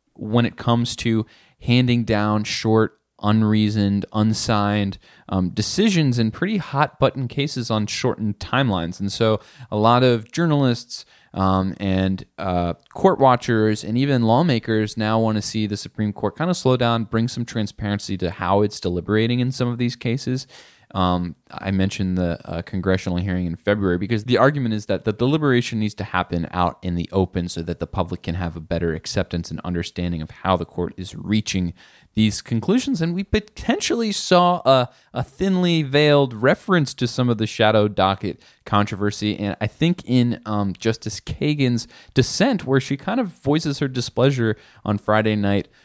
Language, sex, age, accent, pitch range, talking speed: English, male, 20-39, American, 95-125 Hz, 175 wpm